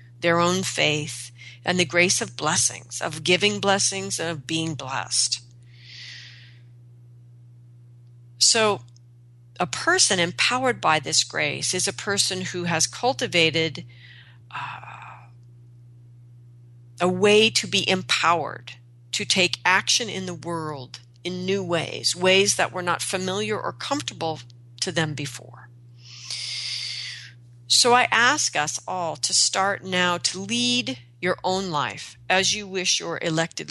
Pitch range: 120-180 Hz